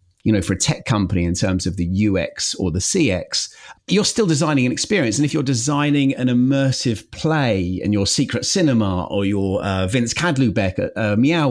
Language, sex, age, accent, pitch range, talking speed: English, male, 30-49, British, 105-145 Hz, 190 wpm